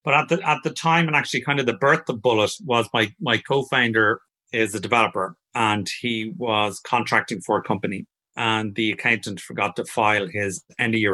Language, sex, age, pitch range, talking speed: English, male, 30-49, 115-135 Hz, 205 wpm